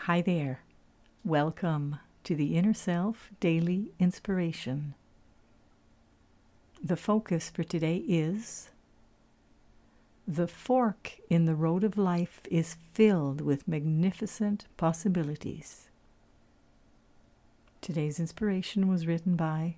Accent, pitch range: American, 155-195 Hz